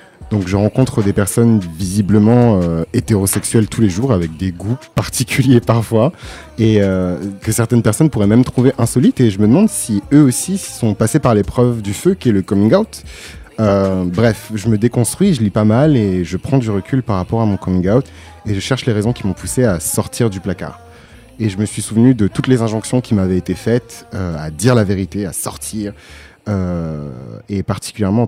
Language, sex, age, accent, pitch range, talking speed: French, male, 30-49, French, 90-115 Hz, 210 wpm